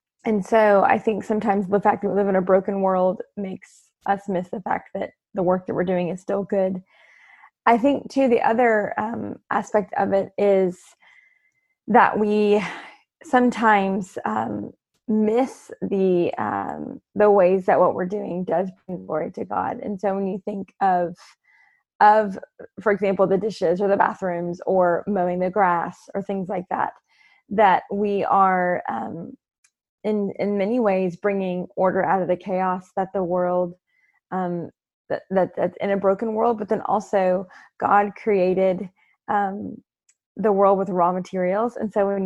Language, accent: English, American